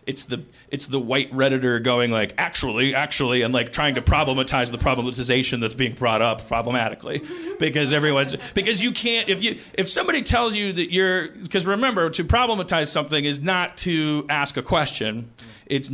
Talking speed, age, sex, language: 185 wpm, 40-59, male, English